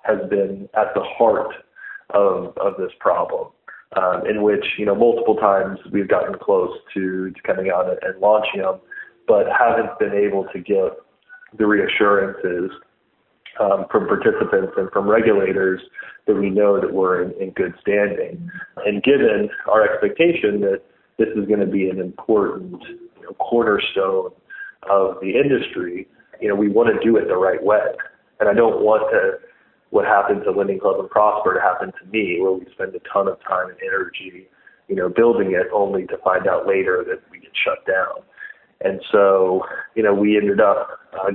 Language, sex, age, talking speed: English, male, 30-49, 180 wpm